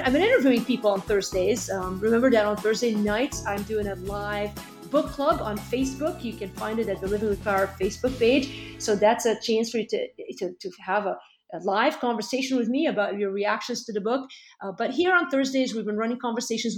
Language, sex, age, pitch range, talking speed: English, female, 40-59, 200-245 Hz, 220 wpm